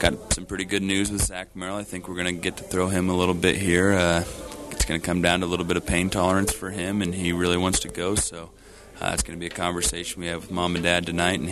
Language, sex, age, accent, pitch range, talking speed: English, male, 30-49, American, 85-95 Hz, 300 wpm